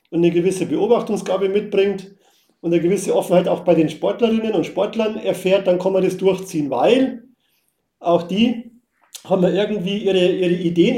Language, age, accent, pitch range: German, 40-59, German, 180-230 Hz